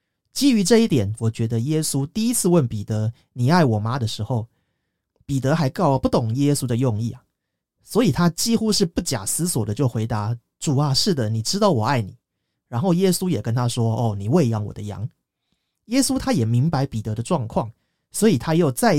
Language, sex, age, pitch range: Chinese, male, 30-49, 115-175 Hz